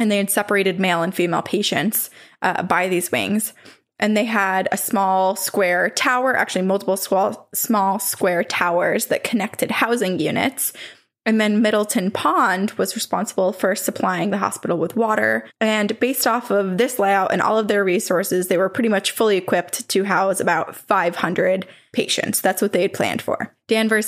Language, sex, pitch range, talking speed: English, female, 185-225 Hz, 170 wpm